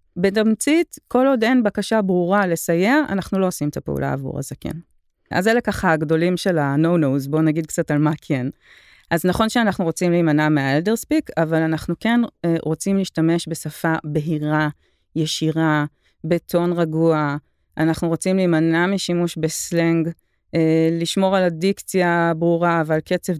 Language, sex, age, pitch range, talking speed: Hebrew, female, 30-49, 155-195 Hz, 145 wpm